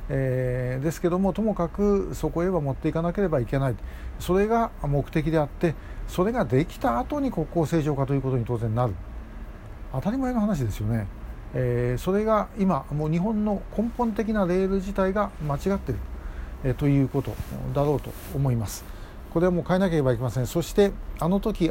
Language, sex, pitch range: Japanese, male, 130-175 Hz